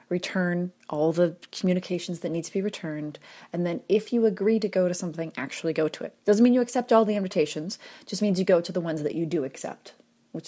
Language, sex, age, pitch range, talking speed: English, female, 30-49, 175-215 Hz, 235 wpm